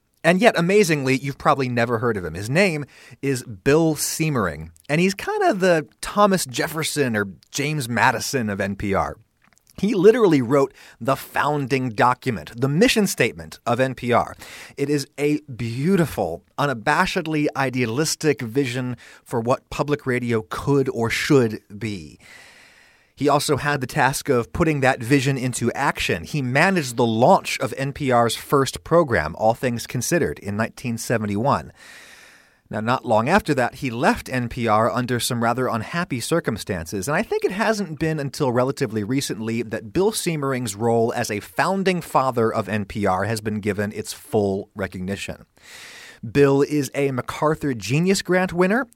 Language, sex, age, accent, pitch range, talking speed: English, male, 30-49, American, 115-150 Hz, 150 wpm